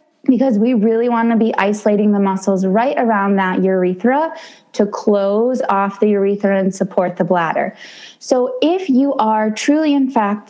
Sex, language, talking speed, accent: female, English, 165 wpm, American